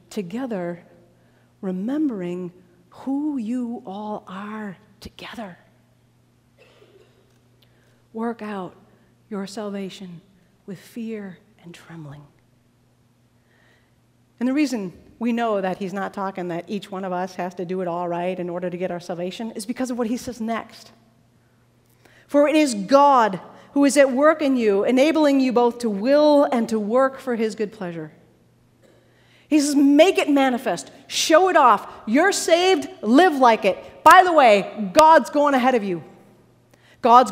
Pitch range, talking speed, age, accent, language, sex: 175-275 Hz, 150 wpm, 40-59, American, English, female